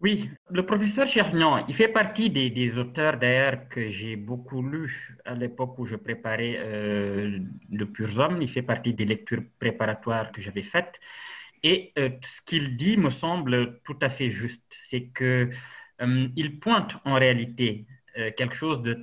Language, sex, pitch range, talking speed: French, male, 115-155 Hz, 165 wpm